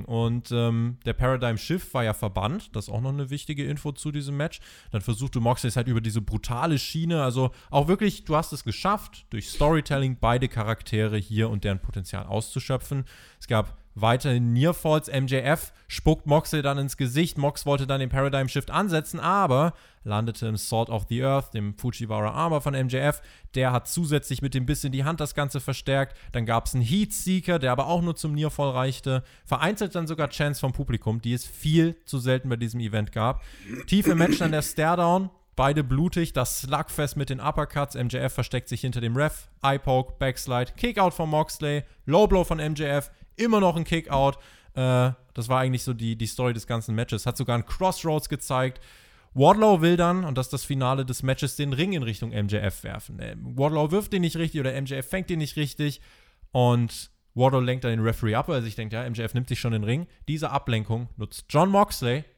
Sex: male